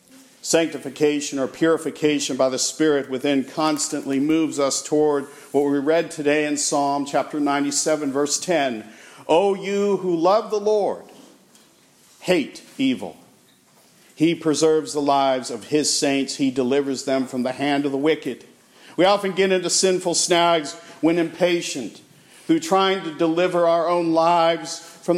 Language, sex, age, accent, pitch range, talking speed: English, male, 50-69, American, 140-170 Hz, 145 wpm